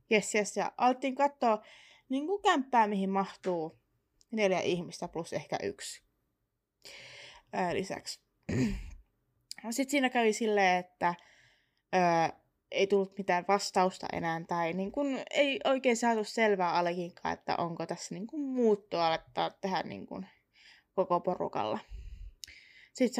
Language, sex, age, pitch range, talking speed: Finnish, female, 20-39, 180-245 Hz, 125 wpm